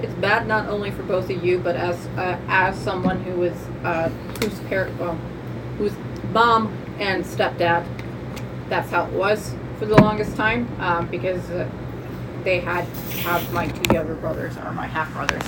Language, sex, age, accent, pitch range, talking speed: English, female, 20-39, American, 125-210 Hz, 180 wpm